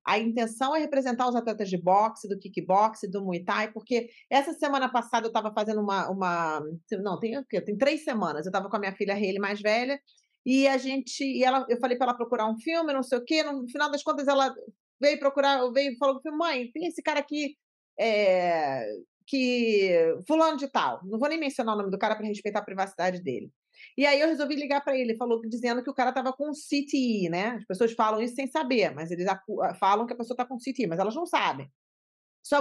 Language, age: Portuguese, 40-59